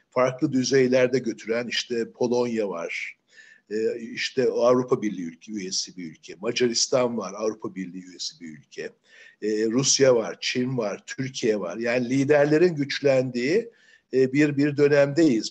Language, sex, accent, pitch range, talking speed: Turkish, male, native, 120-145 Hz, 125 wpm